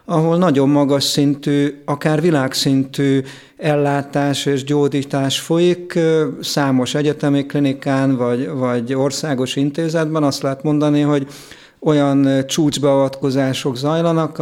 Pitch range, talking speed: 135-150 Hz, 100 wpm